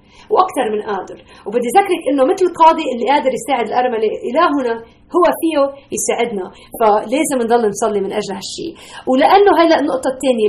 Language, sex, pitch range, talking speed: Arabic, female, 215-320 Hz, 150 wpm